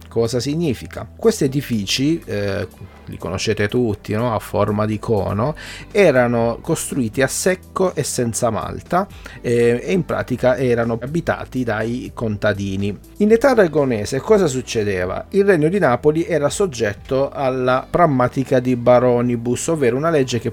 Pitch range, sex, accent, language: 110-150 Hz, male, native, Italian